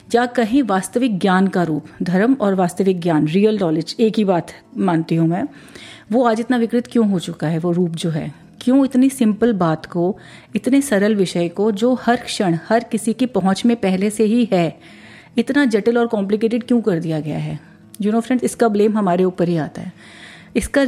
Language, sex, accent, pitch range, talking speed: Hindi, female, native, 185-235 Hz, 205 wpm